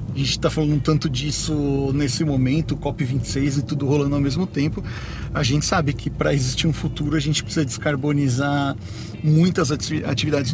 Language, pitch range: Portuguese, 135-155 Hz